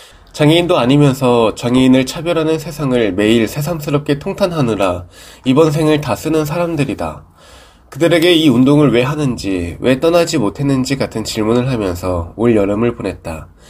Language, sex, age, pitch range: Korean, male, 20-39, 110-155 Hz